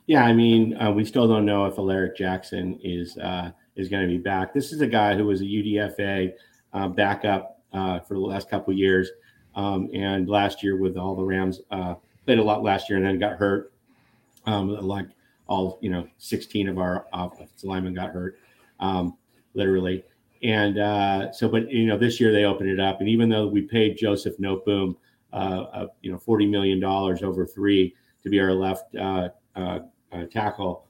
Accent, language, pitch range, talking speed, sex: American, English, 95-105 Hz, 200 wpm, male